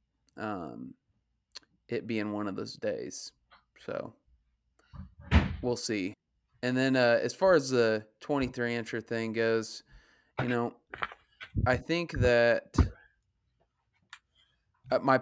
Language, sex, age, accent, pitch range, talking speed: English, male, 20-39, American, 105-130 Hz, 105 wpm